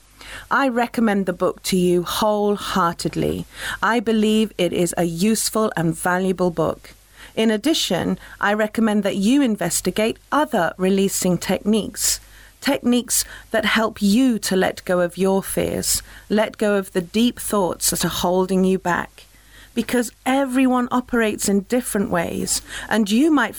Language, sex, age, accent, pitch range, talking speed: English, female, 40-59, British, 180-230 Hz, 140 wpm